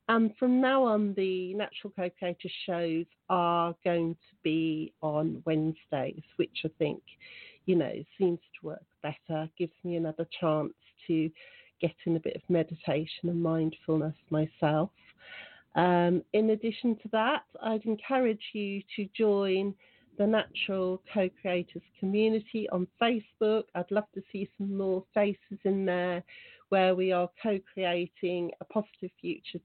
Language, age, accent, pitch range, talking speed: English, 40-59, British, 165-195 Hz, 140 wpm